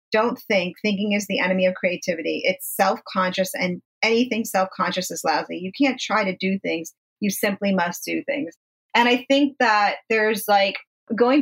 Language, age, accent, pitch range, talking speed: English, 40-59, American, 195-270 Hz, 175 wpm